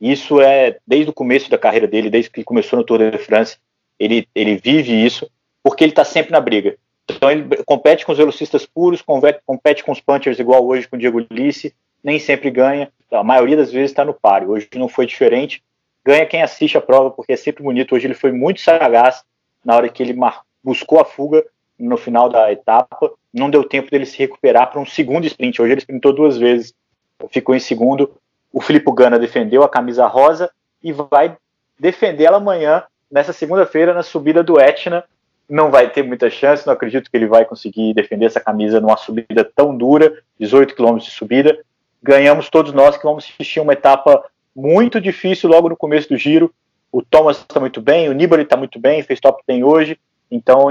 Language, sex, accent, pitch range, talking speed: Portuguese, male, Brazilian, 125-160 Hz, 200 wpm